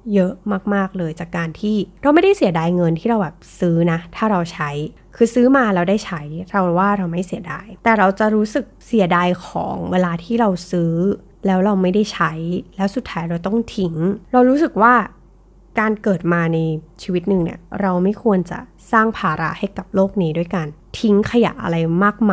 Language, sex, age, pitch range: Thai, female, 20-39, 170-215 Hz